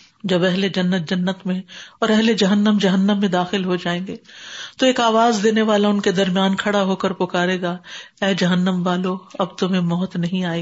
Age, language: 50-69, Urdu